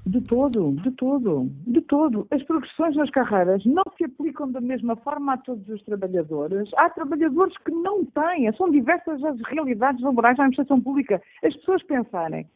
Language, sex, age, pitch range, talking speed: Portuguese, female, 50-69, 230-325 Hz, 170 wpm